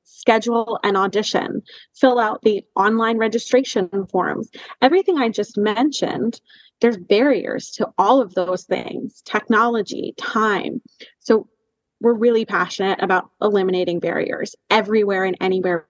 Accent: American